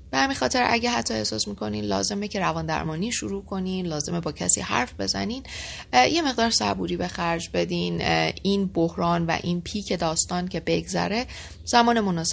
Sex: female